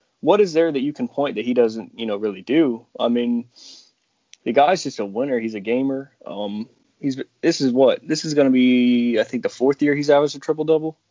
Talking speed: 245 wpm